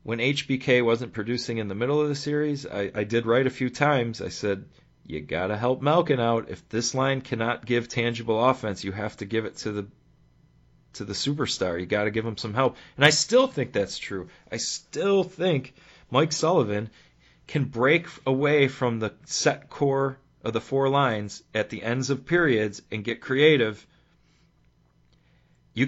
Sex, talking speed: male, 180 wpm